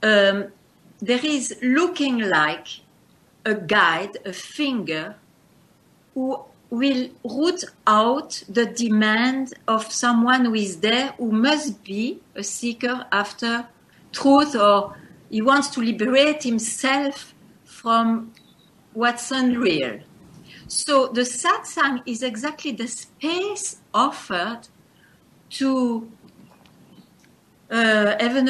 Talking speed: 100 wpm